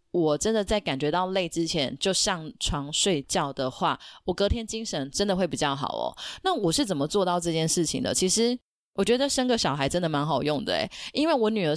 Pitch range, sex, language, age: 155-205 Hz, female, Chinese, 20-39